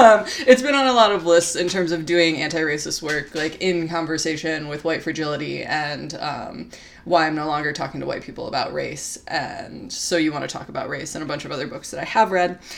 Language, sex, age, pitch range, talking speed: English, female, 20-39, 160-210 Hz, 235 wpm